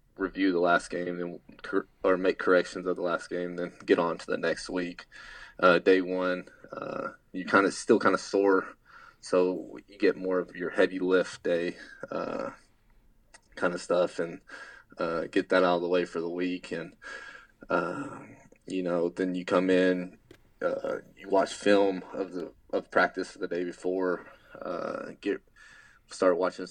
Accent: American